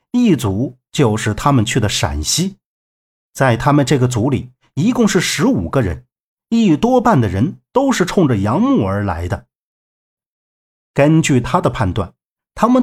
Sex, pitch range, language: male, 120-195 Hz, Chinese